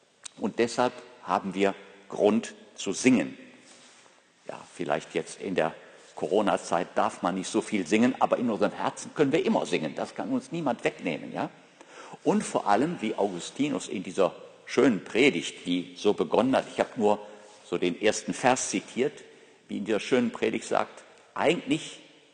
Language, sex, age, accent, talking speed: German, male, 50-69, German, 160 wpm